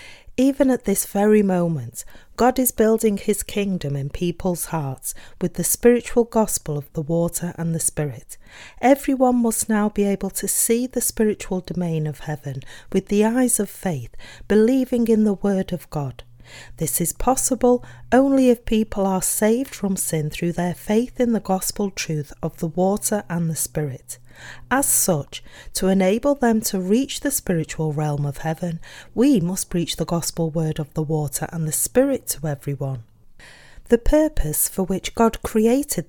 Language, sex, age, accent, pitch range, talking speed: English, female, 40-59, British, 160-225 Hz, 170 wpm